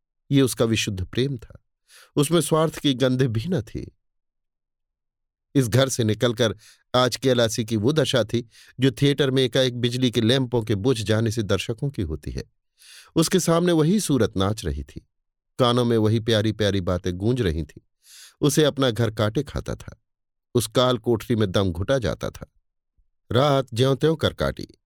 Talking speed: 130 wpm